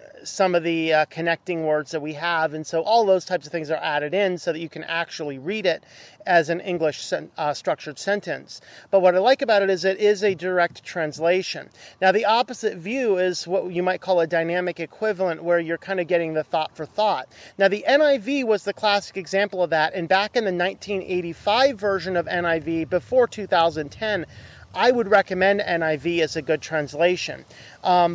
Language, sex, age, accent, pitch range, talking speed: English, male, 40-59, American, 165-200 Hz, 200 wpm